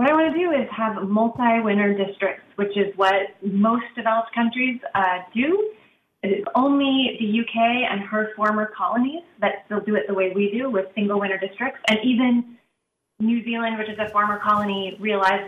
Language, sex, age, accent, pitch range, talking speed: English, female, 30-49, American, 195-235 Hz, 185 wpm